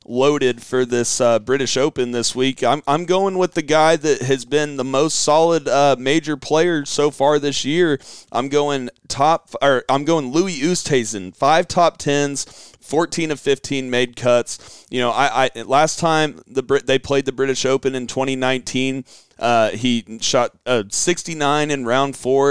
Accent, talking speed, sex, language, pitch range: American, 180 wpm, male, English, 120-140 Hz